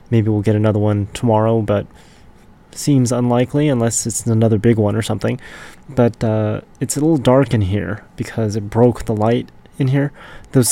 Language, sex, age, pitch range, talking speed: English, male, 20-39, 110-130 Hz, 180 wpm